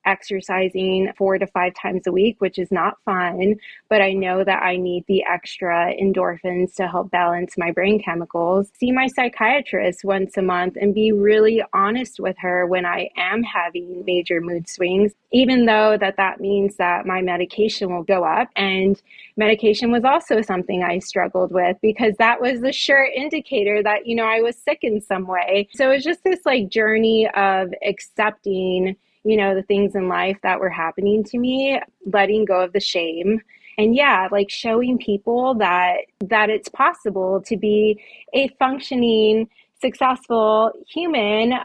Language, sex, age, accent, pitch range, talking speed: English, female, 20-39, American, 185-225 Hz, 170 wpm